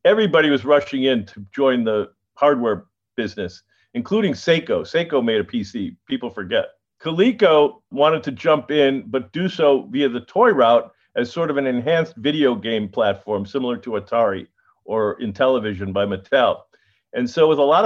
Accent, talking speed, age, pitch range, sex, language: American, 165 wpm, 50-69, 110-145 Hz, male, English